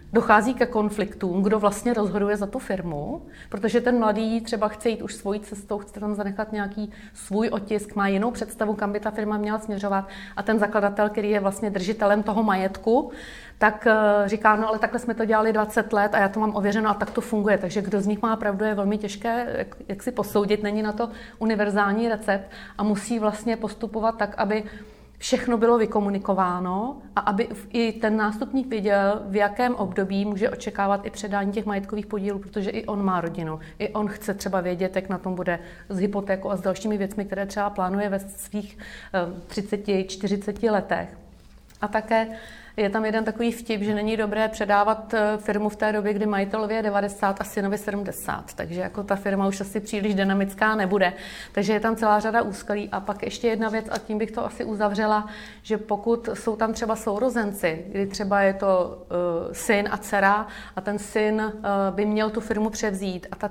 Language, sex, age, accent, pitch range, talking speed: Czech, female, 30-49, native, 200-220 Hz, 190 wpm